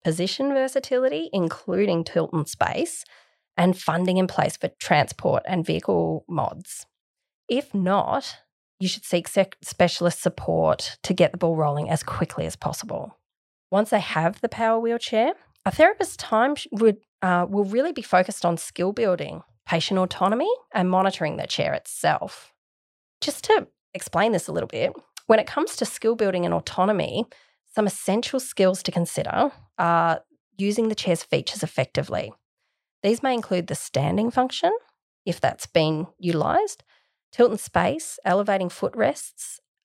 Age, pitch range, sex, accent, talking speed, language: 20-39, 170-225 Hz, female, Australian, 150 wpm, English